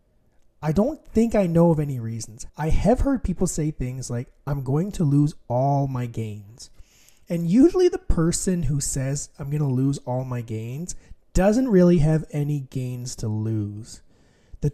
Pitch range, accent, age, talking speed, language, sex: 135-190 Hz, American, 30-49, 170 wpm, English, male